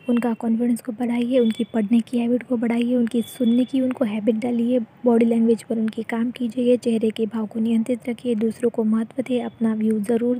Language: Hindi